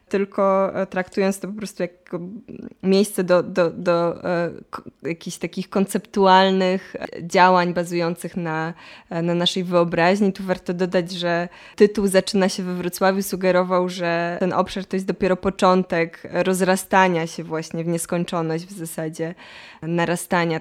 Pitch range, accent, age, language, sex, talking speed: 165-190 Hz, native, 20-39, Polish, female, 125 wpm